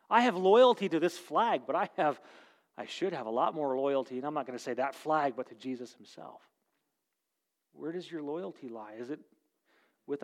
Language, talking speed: English, 210 wpm